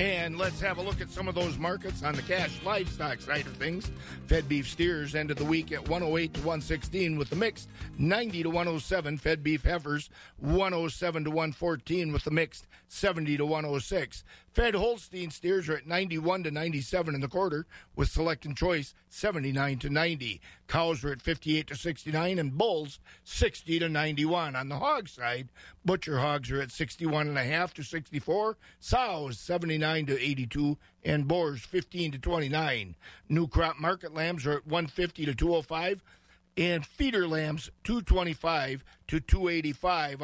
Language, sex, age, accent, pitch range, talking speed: English, male, 50-69, American, 150-175 Hz, 165 wpm